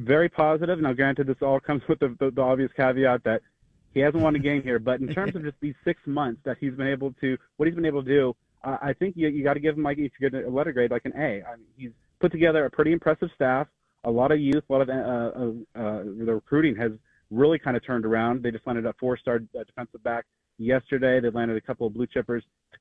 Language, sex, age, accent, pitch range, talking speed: English, male, 30-49, American, 115-135 Hz, 260 wpm